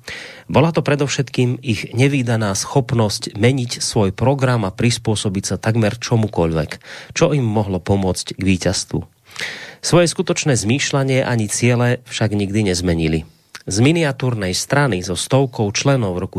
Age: 30-49